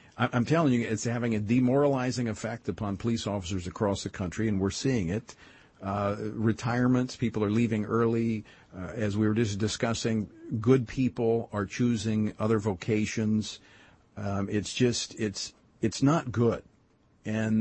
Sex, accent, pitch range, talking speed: male, American, 100-120 Hz, 150 wpm